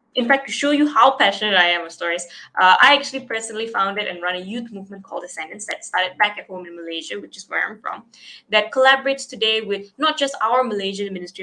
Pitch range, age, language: 190-255 Hz, 20-39, English